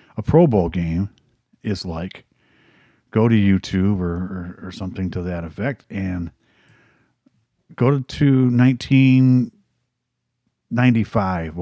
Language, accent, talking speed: English, American, 100 wpm